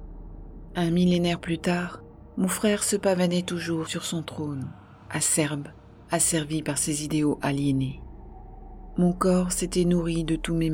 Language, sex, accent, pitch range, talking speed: French, female, French, 140-175 Hz, 140 wpm